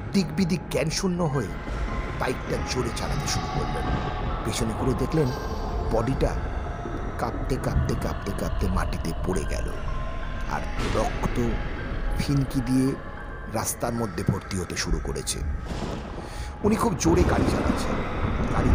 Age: 50-69